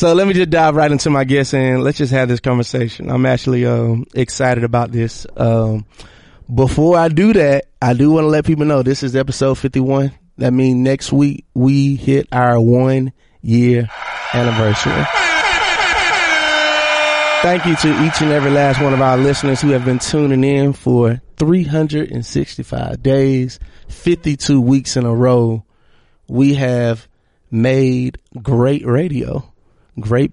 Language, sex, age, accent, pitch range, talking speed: English, male, 20-39, American, 120-145 Hz, 150 wpm